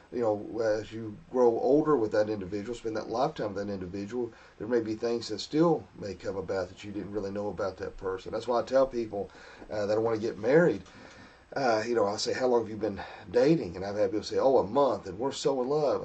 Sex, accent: male, American